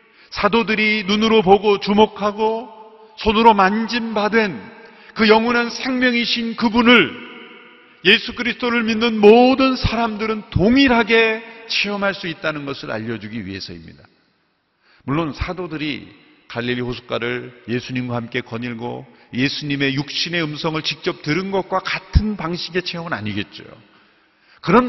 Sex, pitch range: male, 135-210 Hz